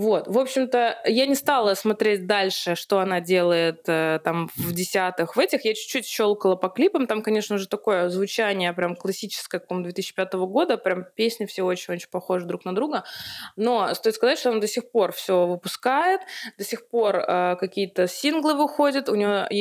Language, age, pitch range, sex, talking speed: Russian, 20-39, 190-235 Hz, female, 180 wpm